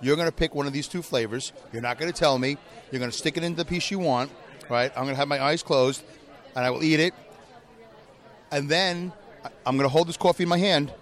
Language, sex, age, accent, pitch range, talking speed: English, male, 40-59, American, 125-170 Hz, 240 wpm